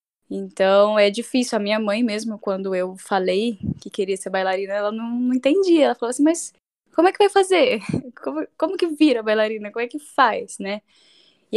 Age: 10-29